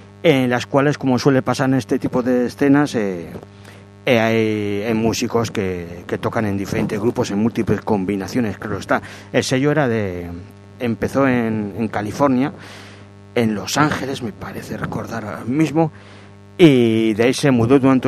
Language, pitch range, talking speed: Spanish, 100-125 Hz, 165 wpm